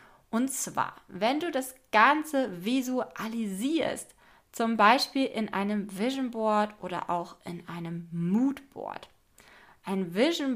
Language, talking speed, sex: German, 120 wpm, female